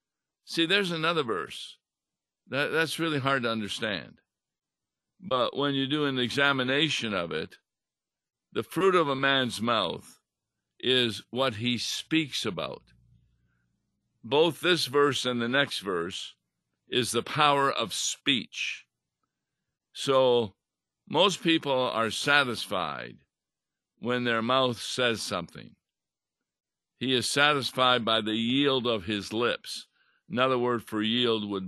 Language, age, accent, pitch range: English, 60-79, American, 110-140 Hz